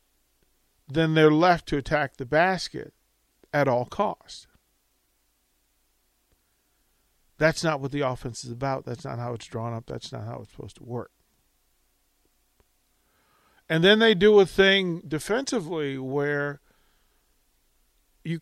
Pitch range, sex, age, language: 120-160 Hz, male, 50-69, English